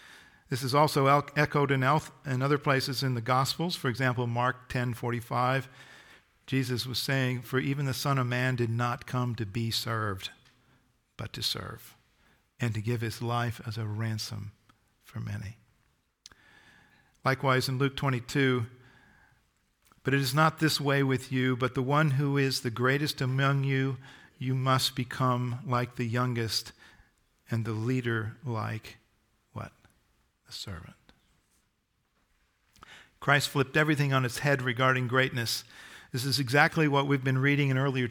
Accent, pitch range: American, 120-135 Hz